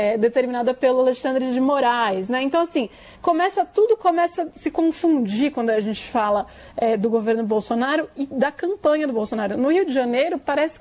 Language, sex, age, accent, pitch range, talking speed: Portuguese, female, 20-39, Brazilian, 235-290 Hz, 180 wpm